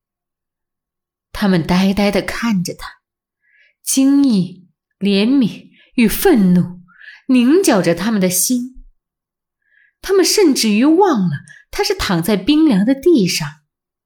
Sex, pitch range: female, 175-260 Hz